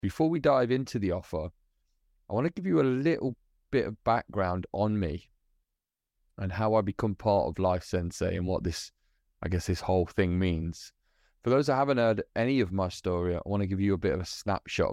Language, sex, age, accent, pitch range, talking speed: English, male, 20-39, British, 90-110 Hz, 210 wpm